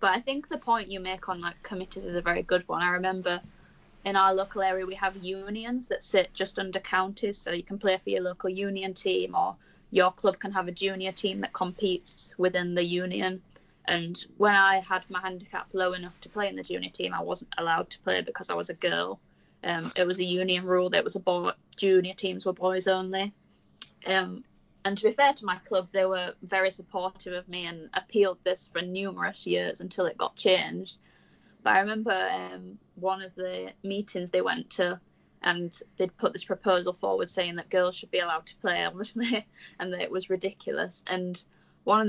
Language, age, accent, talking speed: English, 10-29, British, 210 wpm